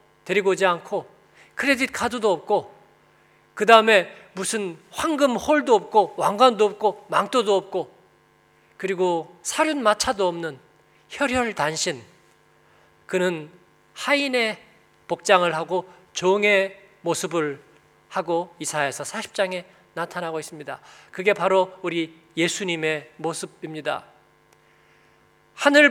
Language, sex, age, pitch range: Korean, male, 40-59, 175-225 Hz